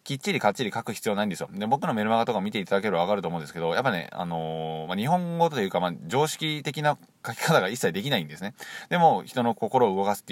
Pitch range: 90-120 Hz